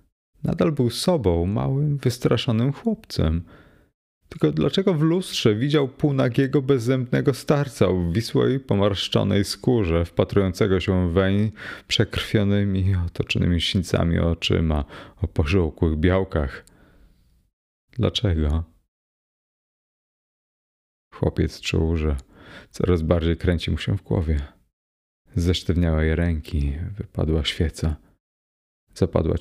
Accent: native